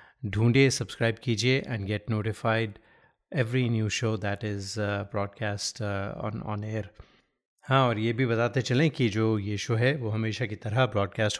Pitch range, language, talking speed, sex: 110-135 Hz, Hindi, 165 wpm, male